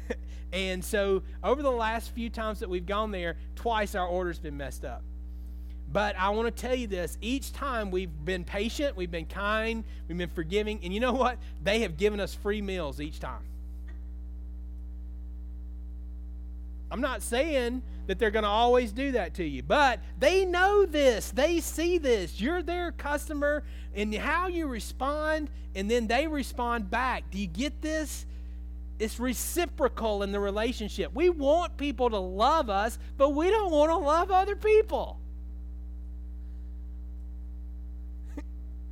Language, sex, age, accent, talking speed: English, male, 30-49, American, 155 wpm